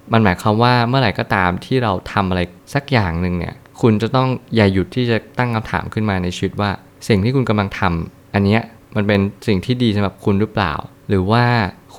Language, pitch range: Thai, 95-115 Hz